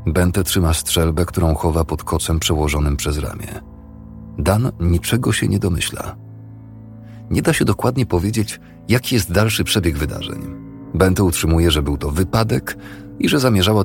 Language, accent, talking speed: Polish, native, 145 wpm